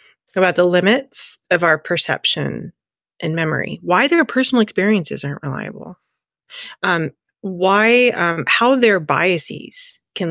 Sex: female